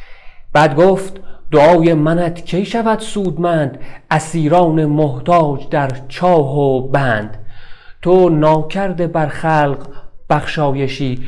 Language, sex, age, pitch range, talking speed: Persian, male, 30-49, 130-165 Hz, 90 wpm